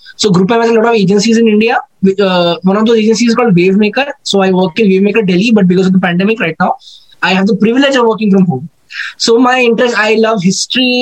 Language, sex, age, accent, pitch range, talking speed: English, male, 20-39, Indian, 190-225 Hz, 240 wpm